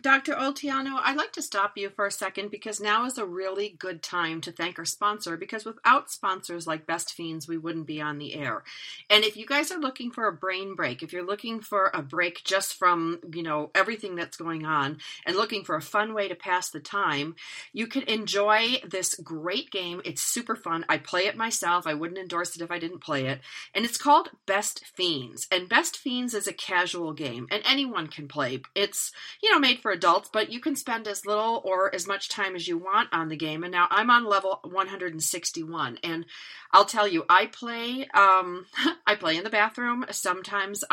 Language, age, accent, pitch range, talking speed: English, 40-59, American, 170-215 Hz, 215 wpm